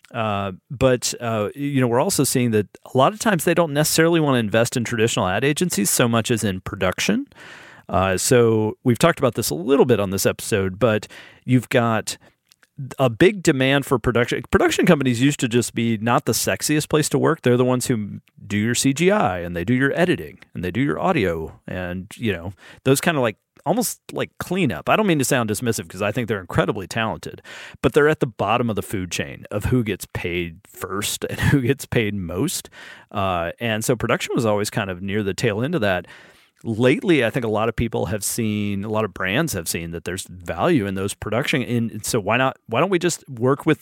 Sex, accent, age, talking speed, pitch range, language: male, American, 40-59, 225 wpm, 105-135 Hz, English